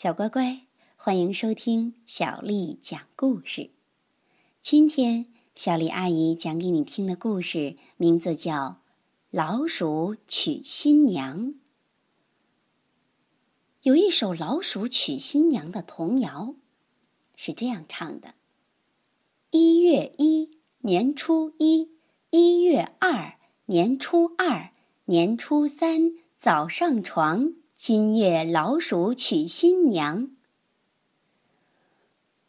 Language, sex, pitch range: Chinese, male, 190-305 Hz